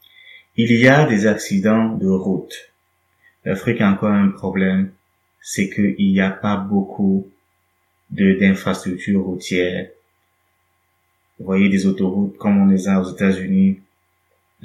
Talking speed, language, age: 130 wpm, French, 30-49